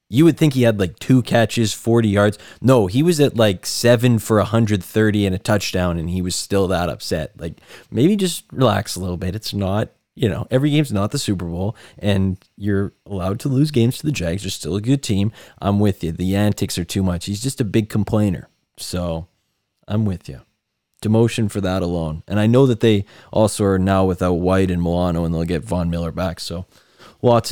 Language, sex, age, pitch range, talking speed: English, male, 20-39, 95-115 Hz, 215 wpm